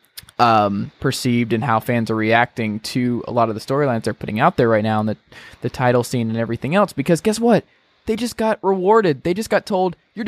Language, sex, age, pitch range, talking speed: English, male, 20-39, 110-145 Hz, 230 wpm